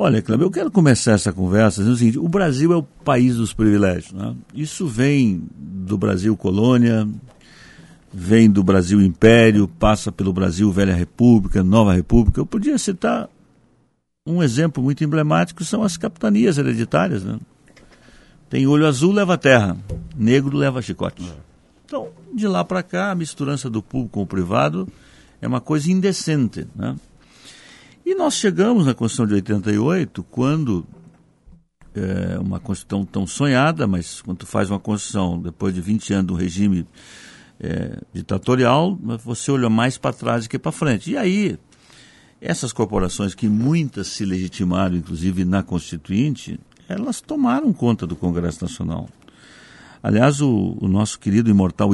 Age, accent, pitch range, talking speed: 60-79, Brazilian, 95-145 Hz, 150 wpm